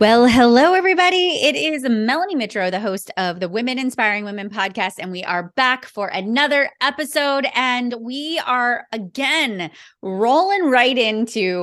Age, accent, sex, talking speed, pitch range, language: 30-49, American, female, 150 wpm, 175-240 Hz, English